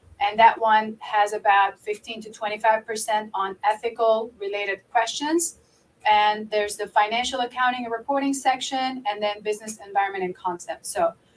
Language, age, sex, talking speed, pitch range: English, 30-49, female, 145 wpm, 205-255 Hz